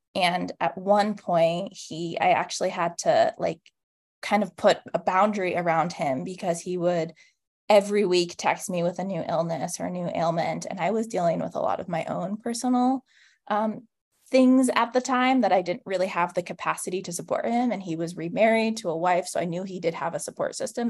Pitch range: 175-215 Hz